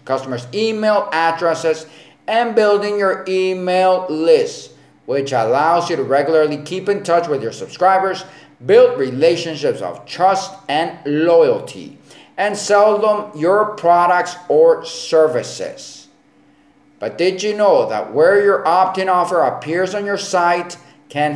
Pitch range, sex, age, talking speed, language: 155-195 Hz, male, 50-69, 130 wpm, English